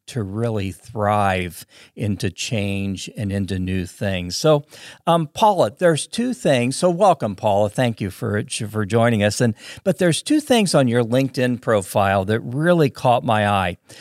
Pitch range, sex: 105-135 Hz, male